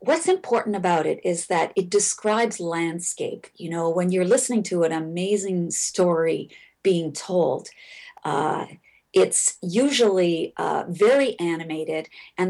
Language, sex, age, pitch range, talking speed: English, female, 40-59, 170-205 Hz, 130 wpm